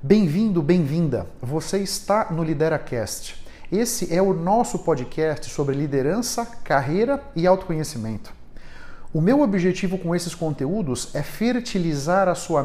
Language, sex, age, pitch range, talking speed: Portuguese, male, 50-69, 150-205 Hz, 125 wpm